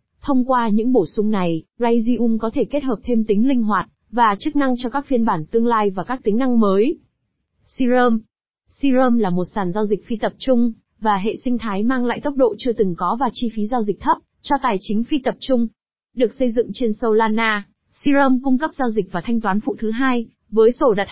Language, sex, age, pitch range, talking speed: Vietnamese, female, 20-39, 210-250 Hz, 230 wpm